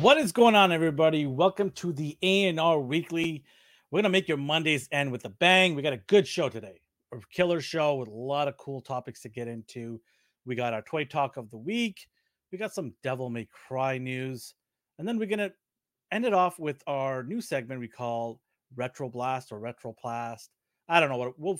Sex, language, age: male, English, 40-59